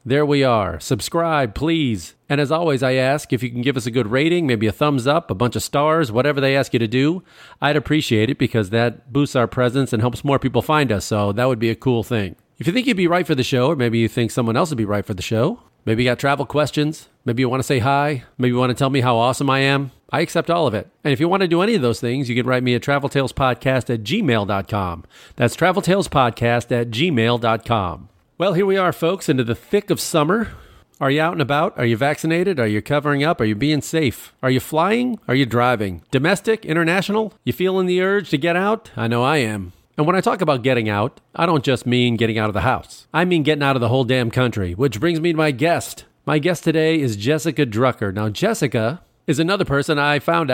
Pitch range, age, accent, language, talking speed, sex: 120-160 Hz, 40-59, American, English, 250 wpm, male